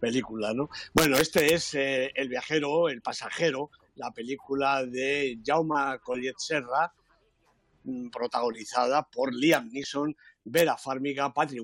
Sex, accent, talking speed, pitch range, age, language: male, Spanish, 120 wpm, 130-155 Hz, 60-79, Spanish